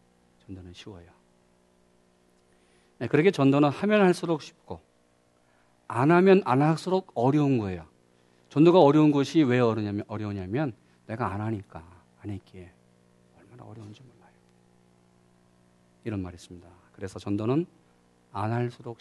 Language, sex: Korean, male